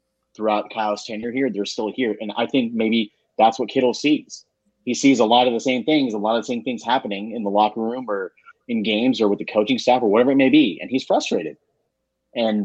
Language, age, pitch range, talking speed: English, 30-49, 110-150 Hz, 240 wpm